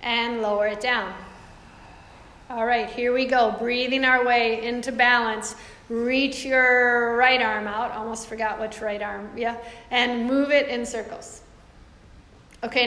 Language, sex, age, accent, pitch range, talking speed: English, female, 40-59, American, 225-275 Hz, 145 wpm